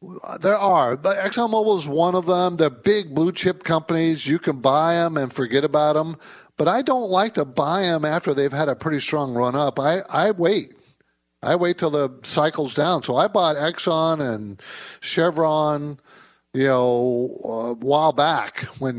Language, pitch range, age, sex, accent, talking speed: English, 120-160 Hz, 50-69, male, American, 175 wpm